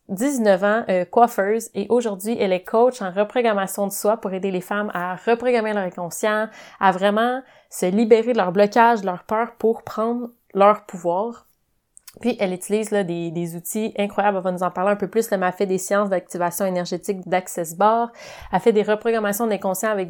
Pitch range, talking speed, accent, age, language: 185-215 Hz, 195 wpm, Canadian, 30-49, French